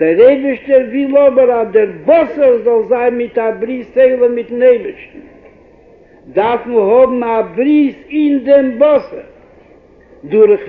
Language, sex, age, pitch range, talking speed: Hebrew, male, 60-79, 240-325 Hz, 120 wpm